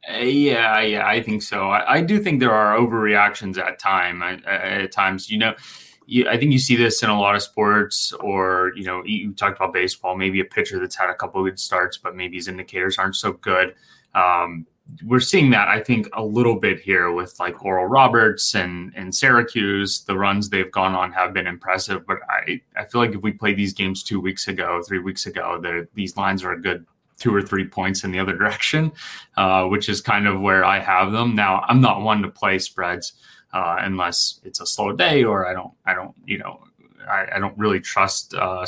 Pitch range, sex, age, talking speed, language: 95-110 Hz, male, 20-39, 225 wpm, English